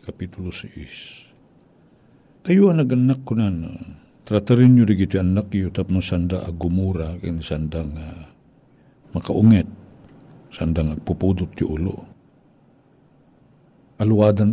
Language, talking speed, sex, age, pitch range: Filipino, 105 wpm, male, 60-79, 90-125 Hz